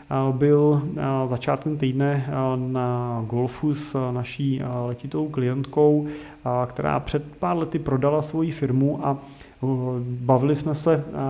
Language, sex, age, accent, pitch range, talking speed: Czech, male, 30-49, native, 130-150 Hz, 105 wpm